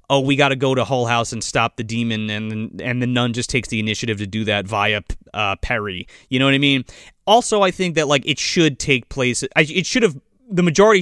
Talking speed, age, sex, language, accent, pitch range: 240 wpm, 30-49, male, English, American, 130-195 Hz